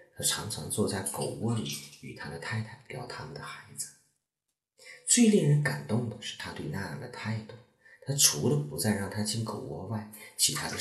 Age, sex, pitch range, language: 40-59, male, 105-140 Hz, Chinese